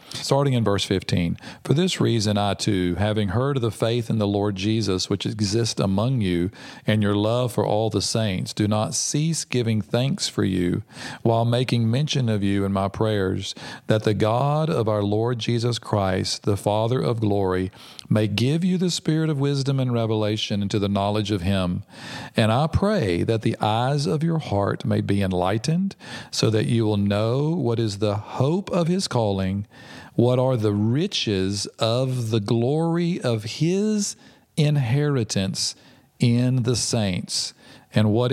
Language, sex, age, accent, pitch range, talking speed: English, male, 40-59, American, 100-130 Hz, 170 wpm